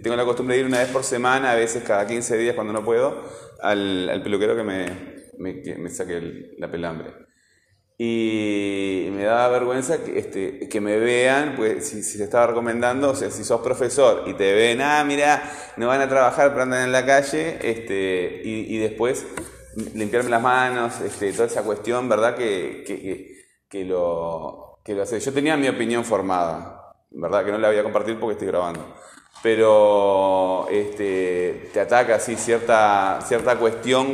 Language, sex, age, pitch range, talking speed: Spanish, male, 20-39, 100-125 Hz, 185 wpm